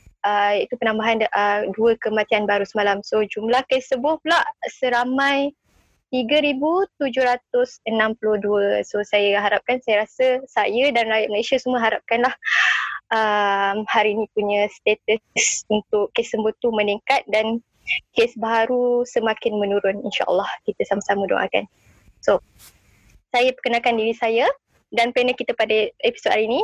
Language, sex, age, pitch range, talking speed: Malay, female, 10-29, 215-270 Hz, 130 wpm